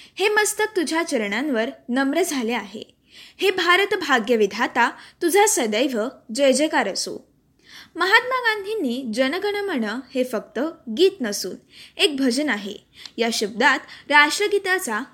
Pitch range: 230-360 Hz